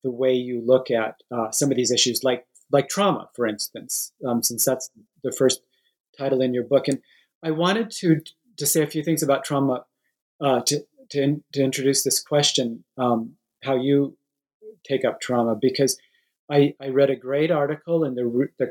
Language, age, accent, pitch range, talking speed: English, 40-59, American, 125-150 Hz, 190 wpm